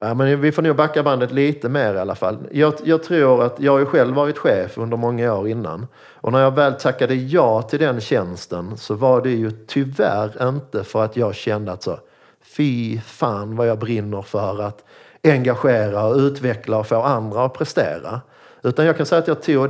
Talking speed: 200 wpm